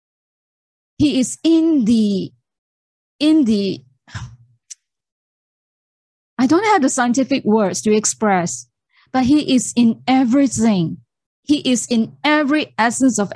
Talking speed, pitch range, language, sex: 110 wpm, 180-260 Hz, English, female